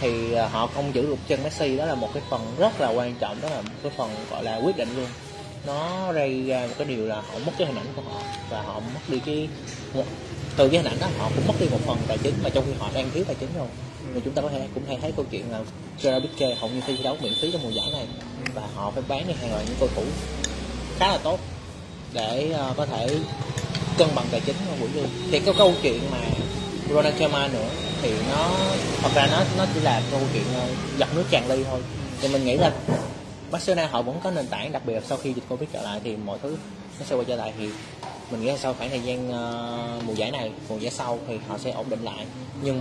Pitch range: 115-140 Hz